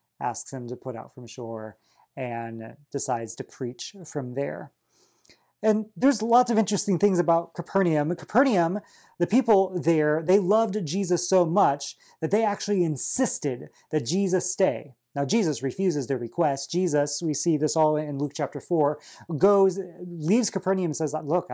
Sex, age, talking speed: male, 30-49, 160 wpm